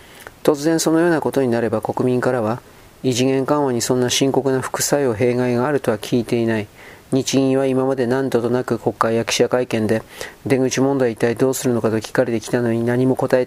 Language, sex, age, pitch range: Japanese, male, 40-59, 120-130 Hz